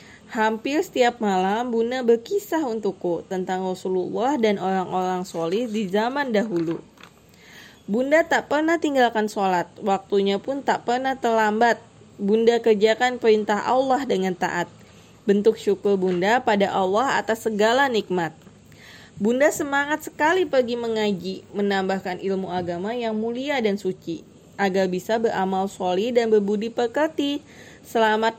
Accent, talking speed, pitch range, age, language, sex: native, 125 wpm, 195-245 Hz, 20-39, Indonesian, female